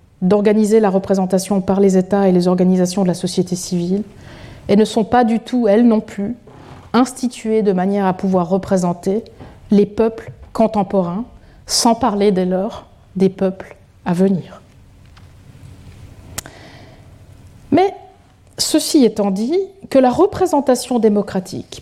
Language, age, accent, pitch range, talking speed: French, 30-49, French, 185-245 Hz, 130 wpm